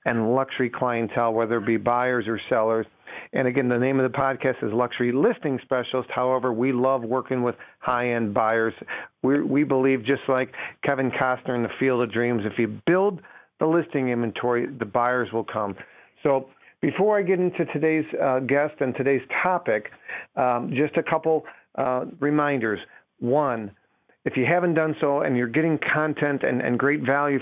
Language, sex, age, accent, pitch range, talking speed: English, male, 50-69, American, 120-140 Hz, 175 wpm